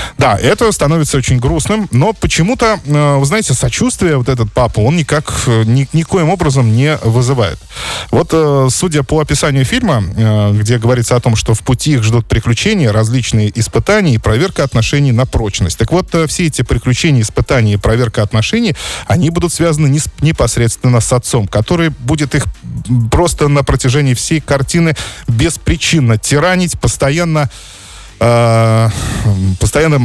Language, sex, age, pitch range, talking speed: Russian, male, 20-39, 115-150 Hz, 135 wpm